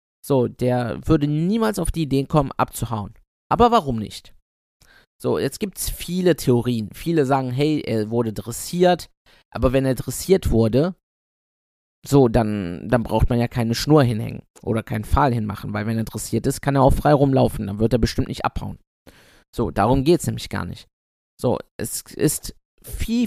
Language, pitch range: German, 110-150 Hz